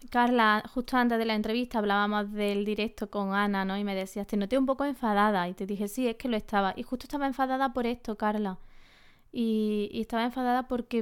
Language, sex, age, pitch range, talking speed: Spanish, female, 20-39, 205-240 Hz, 220 wpm